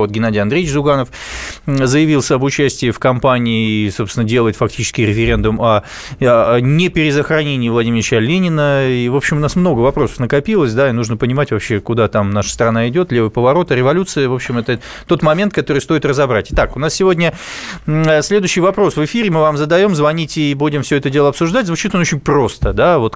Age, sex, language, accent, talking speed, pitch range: 20-39, male, Russian, native, 180 wpm, 125-165 Hz